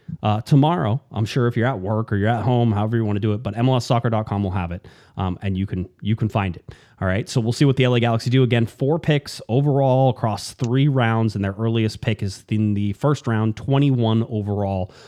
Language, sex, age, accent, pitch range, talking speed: English, male, 30-49, American, 105-135 Hz, 235 wpm